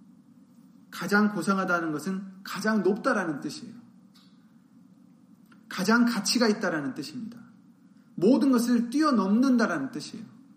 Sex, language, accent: male, Korean, native